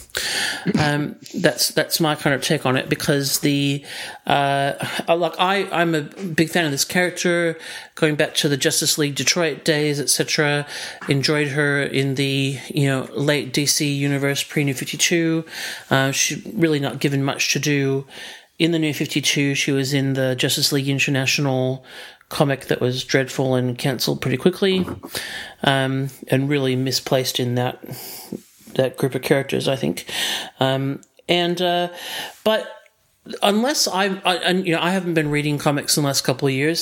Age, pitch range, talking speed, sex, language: 40-59, 135-160 Hz, 165 wpm, male, English